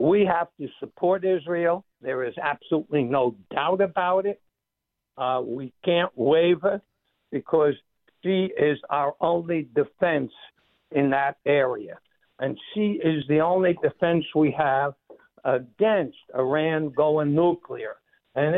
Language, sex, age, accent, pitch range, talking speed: English, male, 60-79, American, 150-200 Hz, 125 wpm